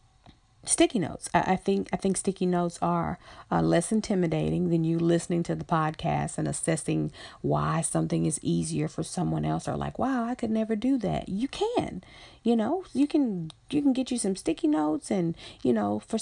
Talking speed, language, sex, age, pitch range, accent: 195 wpm, English, female, 40-59, 155-205 Hz, American